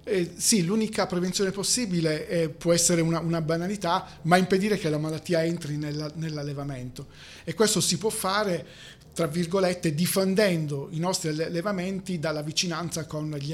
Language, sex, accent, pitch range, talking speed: Italian, male, native, 155-180 Hz, 150 wpm